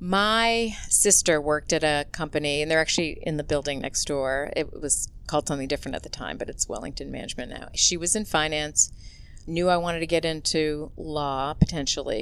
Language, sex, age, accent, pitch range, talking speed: English, female, 40-59, American, 150-180 Hz, 190 wpm